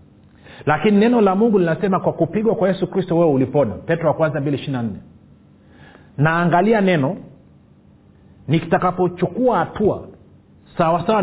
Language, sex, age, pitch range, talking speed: Swahili, male, 40-59, 140-180 Hz, 110 wpm